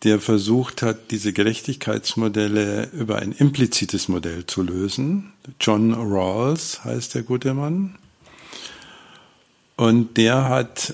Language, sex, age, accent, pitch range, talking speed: German, male, 50-69, German, 105-130 Hz, 110 wpm